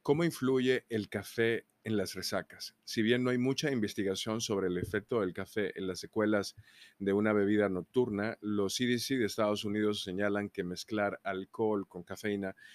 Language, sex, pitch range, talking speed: Spanish, male, 100-115 Hz, 170 wpm